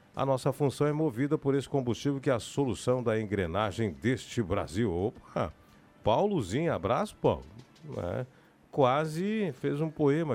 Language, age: Portuguese, 40-59